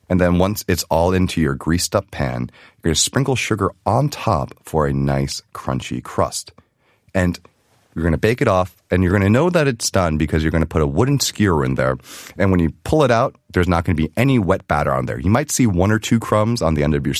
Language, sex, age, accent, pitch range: Korean, male, 30-49, American, 75-105 Hz